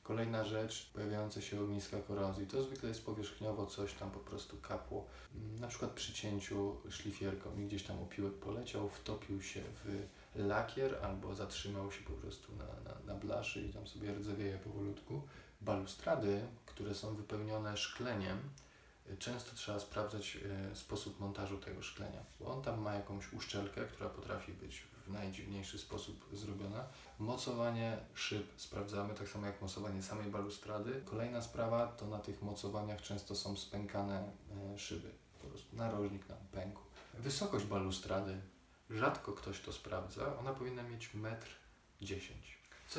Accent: native